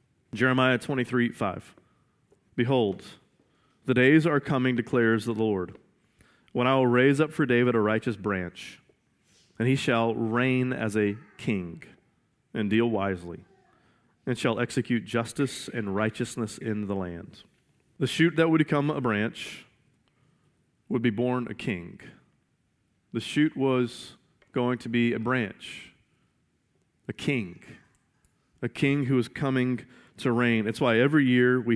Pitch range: 110-130 Hz